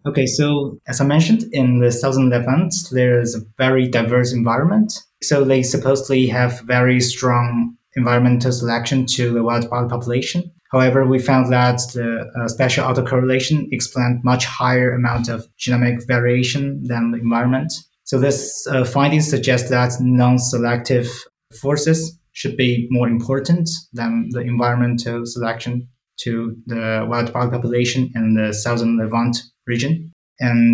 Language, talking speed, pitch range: English, 140 wpm, 120-130 Hz